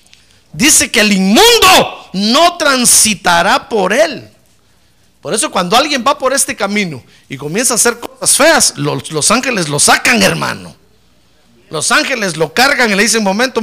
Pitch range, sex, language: 165-250 Hz, male, Spanish